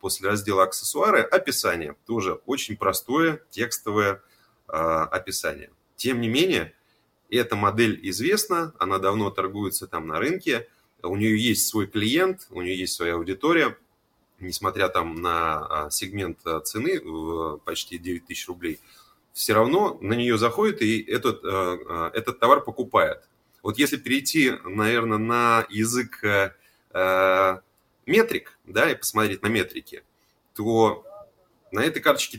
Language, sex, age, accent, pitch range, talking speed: Russian, male, 30-49, native, 95-120 Hz, 130 wpm